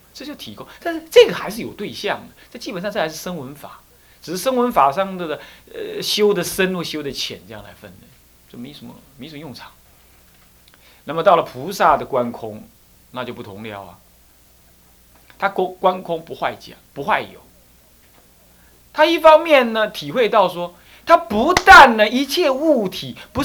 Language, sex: Chinese, male